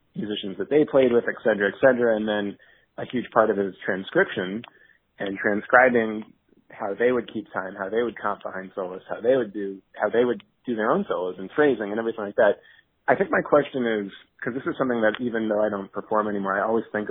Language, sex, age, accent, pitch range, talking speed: English, male, 30-49, American, 100-115 Hz, 235 wpm